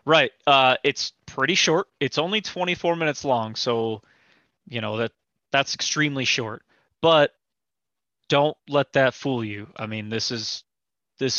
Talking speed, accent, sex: 150 wpm, American, male